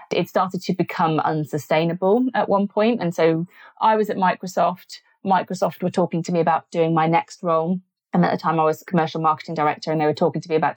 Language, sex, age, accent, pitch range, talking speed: English, female, 30-49, British, 165-195 Hz, 225 wpm